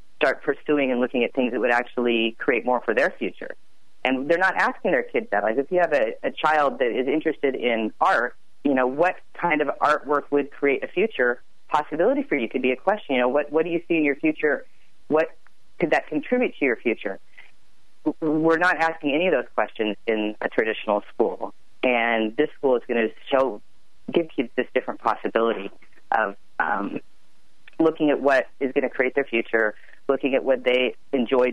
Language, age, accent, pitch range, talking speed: English, 30-49, American, 120-155 Hz, 200 wpm